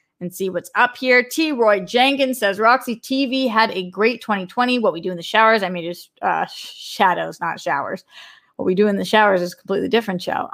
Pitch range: 185-235 Hz